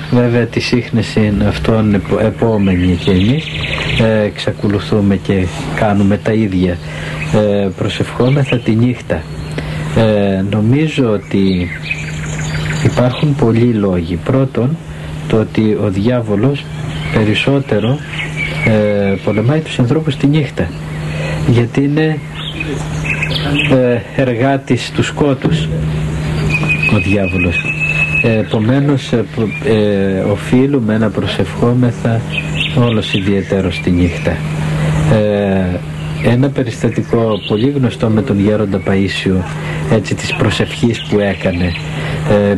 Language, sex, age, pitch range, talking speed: Greek, male, 60-79, 95-135 Hz, 90 wpm